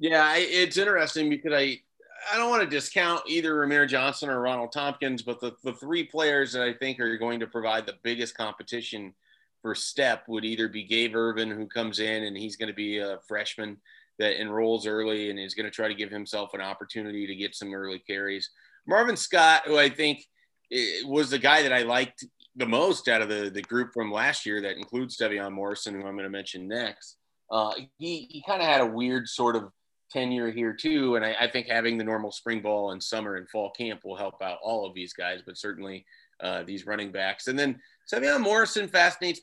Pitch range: 105-150 Hz